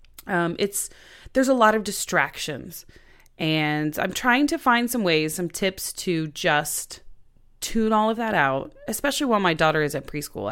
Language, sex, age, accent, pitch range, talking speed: English, female, 30-49, American, 150-215 Hz, 170 wpm